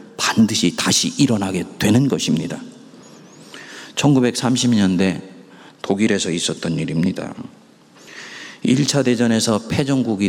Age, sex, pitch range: 40-59, male, 90-110 Hz